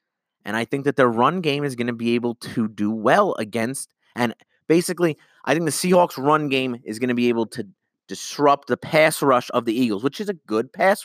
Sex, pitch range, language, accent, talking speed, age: male, 120-150 Hz, English, American, 230 wpm, 30-49